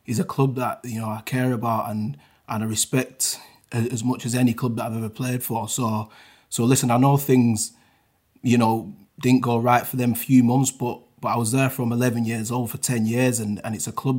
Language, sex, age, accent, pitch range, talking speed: English, male, 20-39, British, 115-130 Hz, 235 wpm